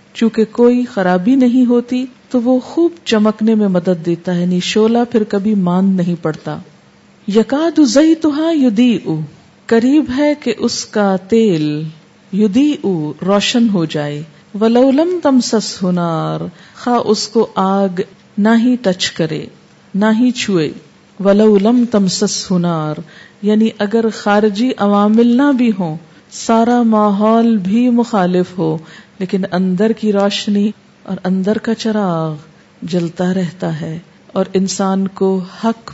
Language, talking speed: Urdu, 130 wpm